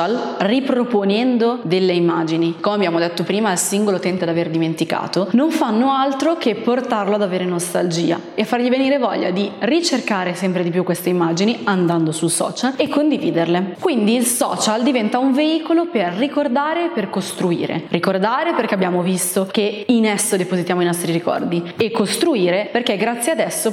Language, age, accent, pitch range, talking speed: Italian, 20-39, native, 180-260 Hz, 165 wpm